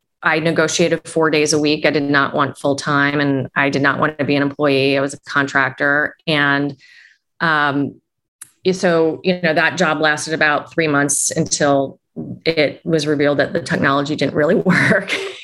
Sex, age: female, 30-49